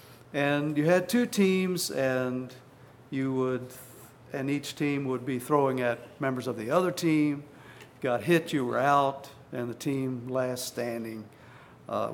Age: 60-79